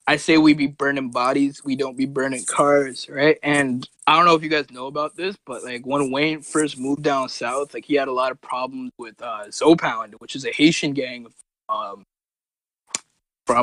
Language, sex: English, male